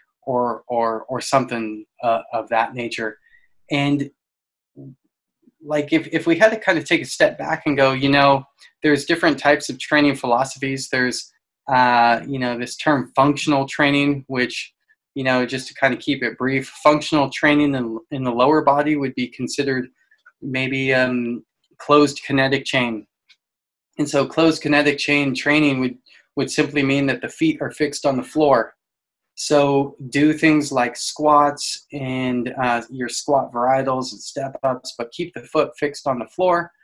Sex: male